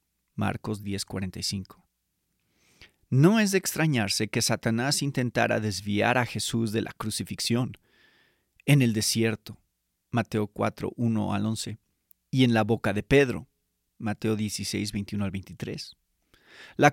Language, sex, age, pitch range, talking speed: Spanish, male, 40-59, 110-140 Hz, 125 wpm